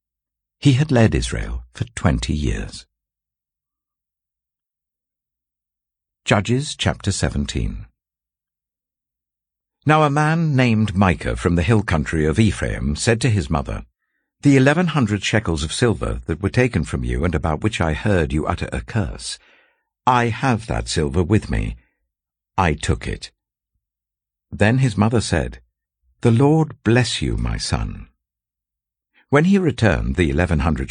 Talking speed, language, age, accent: 135 wpm, English, 60-79, British